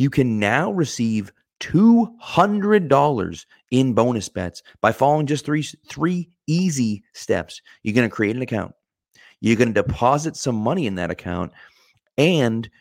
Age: 30-49